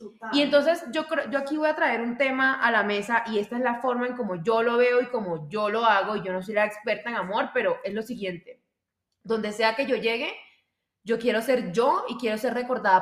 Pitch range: 220-270 Hz